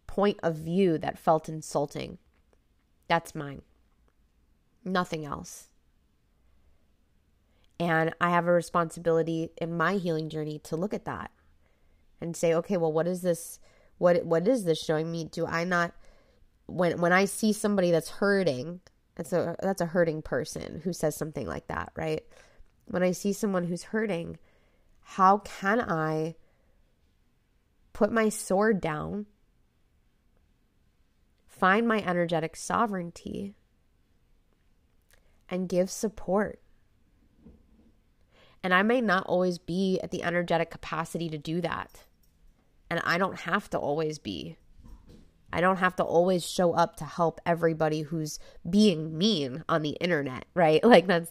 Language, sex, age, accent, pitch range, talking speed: English, female, 20-39, American, 155-185 Hz, 135 wpm